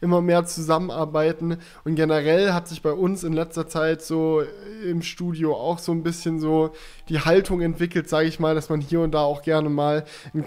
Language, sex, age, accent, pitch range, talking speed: German, male, 10-29, German, 160-180 Hz, 200 wpm